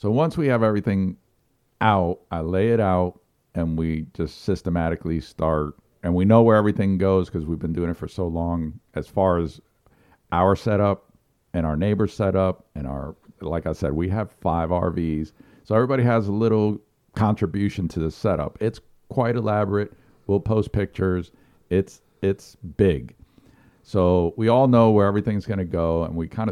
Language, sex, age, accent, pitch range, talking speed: English, male, 50-69, American, 85-105 Hz, 175 wpm